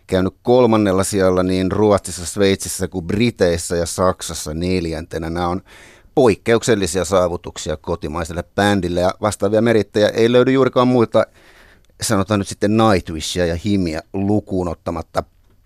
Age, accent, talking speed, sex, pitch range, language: 30-49, native, 120 wpm, male, 90-110 Hz, Finnish